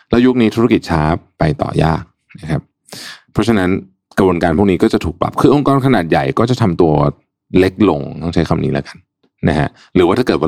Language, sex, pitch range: Thai, male, 80-110 Hz